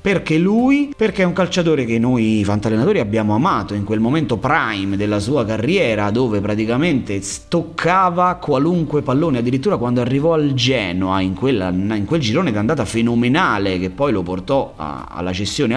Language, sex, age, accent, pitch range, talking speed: Italian, male, 30-49, native, 110-175 Hz, 165 wpm